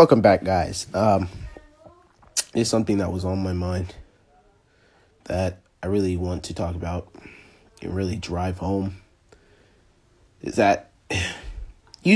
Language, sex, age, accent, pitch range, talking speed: English, male, 20-39, American, 85-100 Hz, 125 wpm